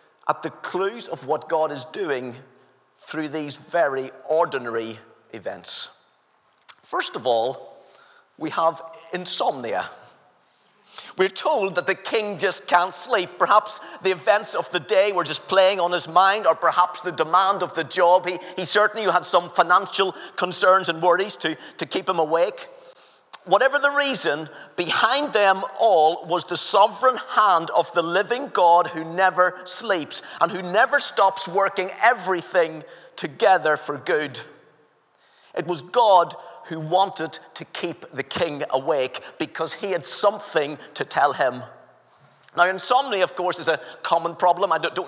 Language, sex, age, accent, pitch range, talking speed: English, male, 40-59, British, 170-205 Hz, 150 wpm